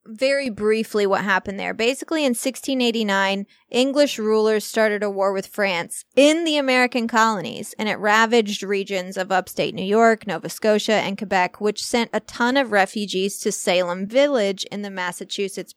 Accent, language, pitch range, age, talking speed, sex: American, English, 195-235 Hz, 20-39, 165 wpm, female